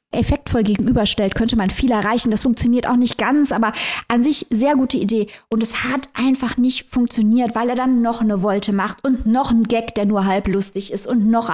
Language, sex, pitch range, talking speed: German, female, 210-250 Hz, 215 wpm